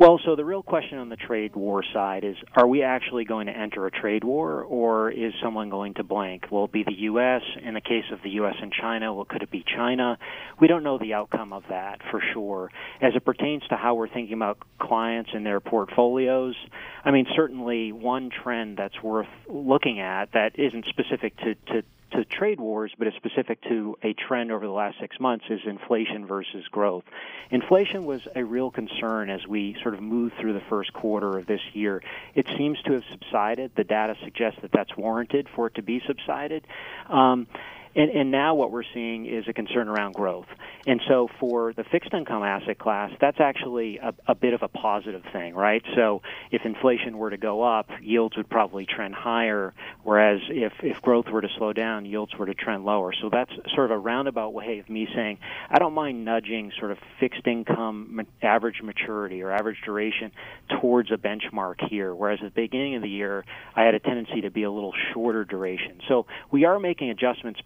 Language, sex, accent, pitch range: English, male, American, 105-125 Hz